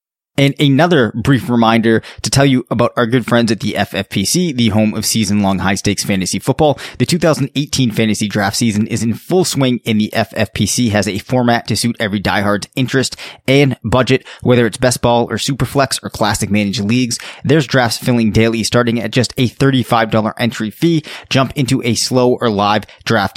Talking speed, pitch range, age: 180 wpm, 110-135 Hz, 20-39